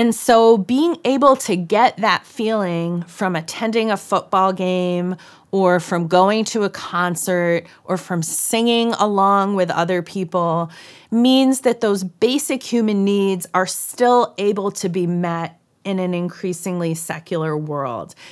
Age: 30-49